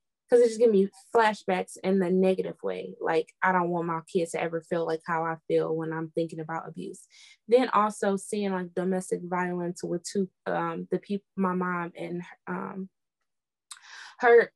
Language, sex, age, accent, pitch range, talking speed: English, female, 20-39, American, 180-220 Hz, 180 wpm